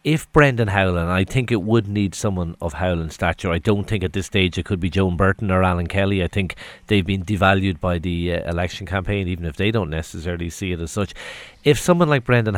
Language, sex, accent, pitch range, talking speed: English, male, Irish, 90-110 Hz, 235 wpm